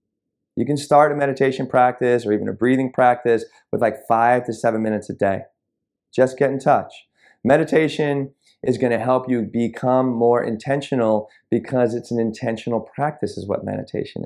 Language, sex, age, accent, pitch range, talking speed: English, male, 20-39, American, 120-145 Hz, 170 wpm